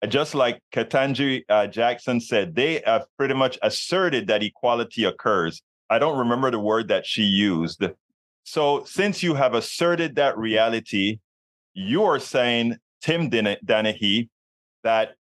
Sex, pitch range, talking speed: male, 110-145 Hz, 145 wpm